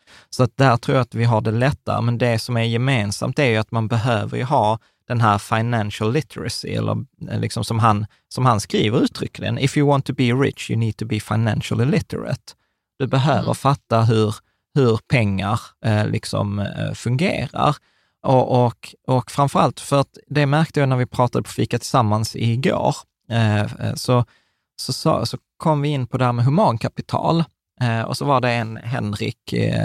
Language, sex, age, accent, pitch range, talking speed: Swedish, male, 20-39, native, 110-135 Hz, 180 wpm